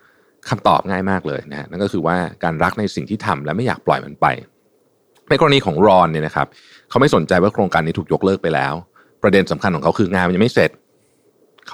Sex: male